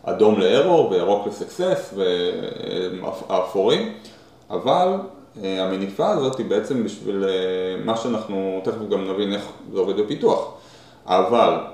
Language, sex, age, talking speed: Hebrew, male, 20-39, 105 wpm